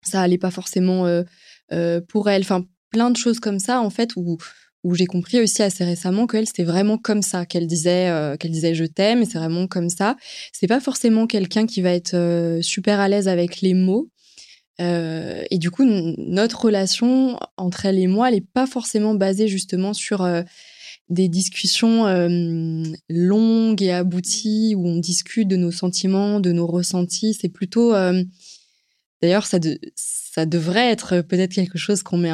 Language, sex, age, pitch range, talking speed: French, female, 20-39, 175-205 Hz, 195 wpm